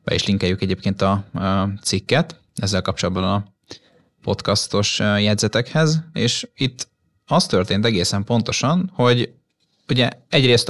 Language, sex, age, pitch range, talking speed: Hungarian, male, 20-39, 95-120 Hz, 110 wpm